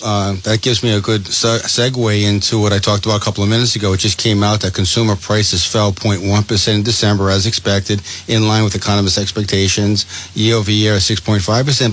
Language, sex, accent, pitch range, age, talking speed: English, male, American, 100-115 Hz, 40-59, 185 wpm